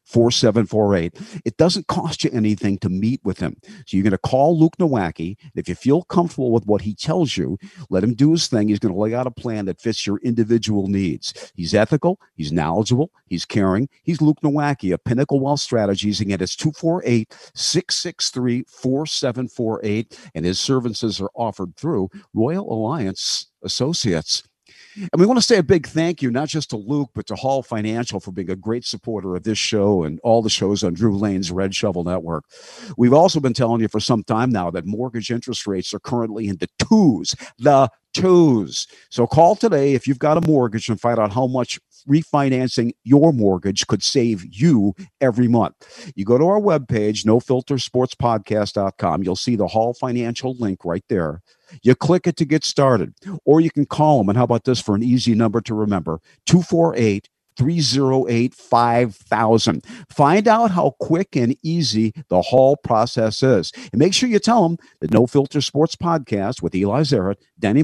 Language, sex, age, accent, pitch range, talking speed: English, male, 50-69, American, 105-145 Hz, 180 wpm